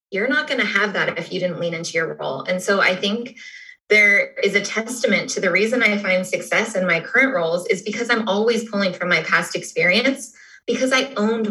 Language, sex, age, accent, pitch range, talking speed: English, female, 20-39, American, 185-240 Hz, 225 wpm